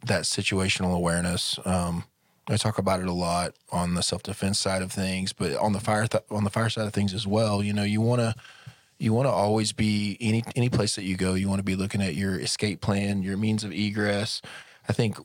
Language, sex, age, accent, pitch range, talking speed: English, male, 20-39, American, 95-105 Hz, 230 wpm